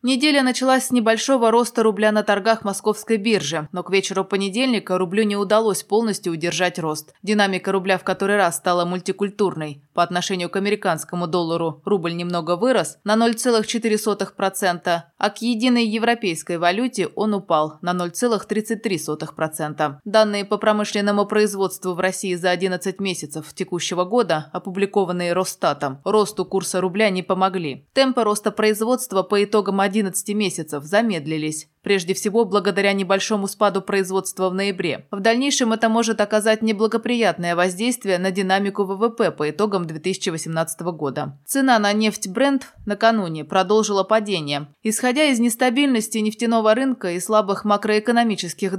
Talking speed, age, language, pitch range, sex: 135 wpm, 20-39, Russian, 180-220 Hz, female